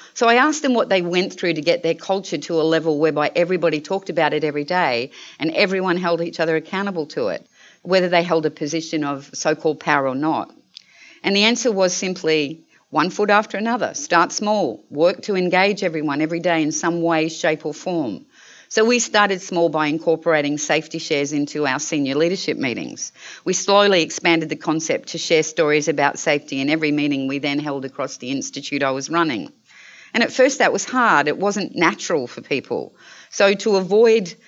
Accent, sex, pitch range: Australian, female, 150-190 Hz